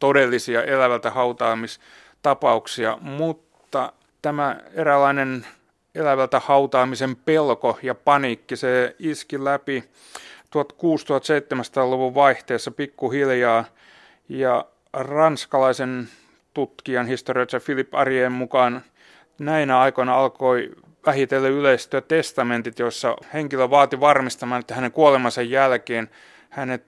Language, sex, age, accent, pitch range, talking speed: Finnish, male, 30-49, native, 125-140 Hz, 85 wpm